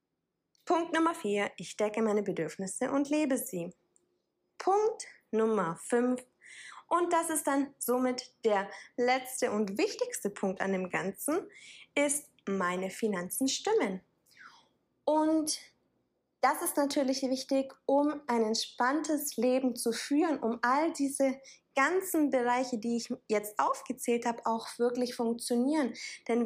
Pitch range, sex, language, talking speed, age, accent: 215-270 Hz, female, German, 125 wpm, 20-39, German